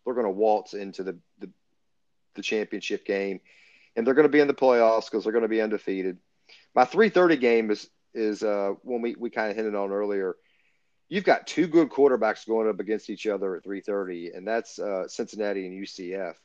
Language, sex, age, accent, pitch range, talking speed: English, male, 40-59, American, 100-120 Hz, 205 wpm